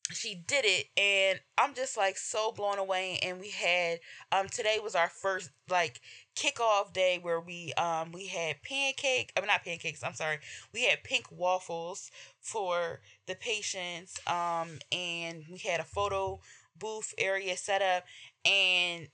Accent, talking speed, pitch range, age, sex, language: American, 155 wpm, 165-190 Hz, 20-39, female, English